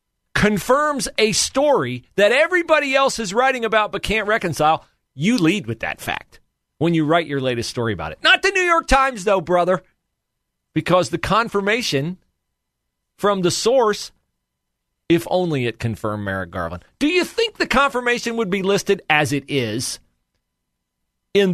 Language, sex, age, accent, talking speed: English, male, 40-59, American, 155 wpm